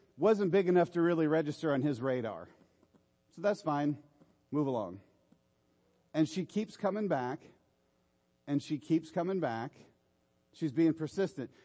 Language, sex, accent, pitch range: English, male, American, 140-185 Hz